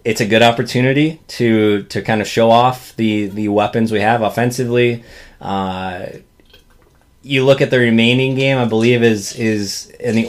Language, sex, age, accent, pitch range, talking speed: English, male, 20-39, American, 100-120 Hz, 170 wpm